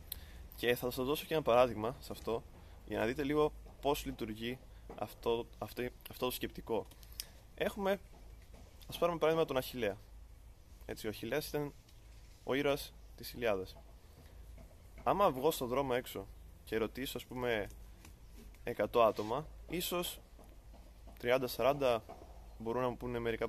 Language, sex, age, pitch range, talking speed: Greek, male, 20-39, 95-140 Hz, 135 wpm